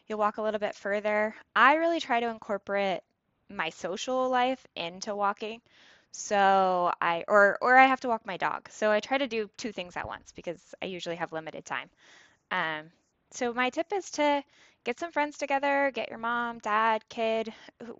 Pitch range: 185-245 Hz